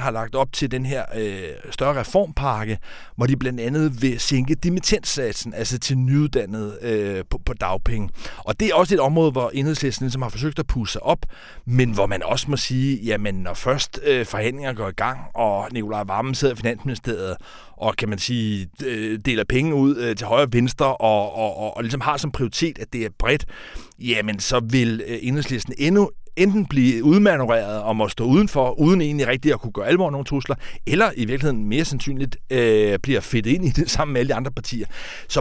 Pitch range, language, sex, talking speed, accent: 110-145 Hz, Danish, male, 210 wpm, native